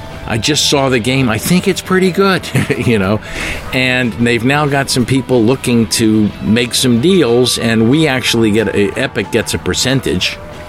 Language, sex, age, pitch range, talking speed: Russian, male, 50-69, 90-115 Hz, 180 wpm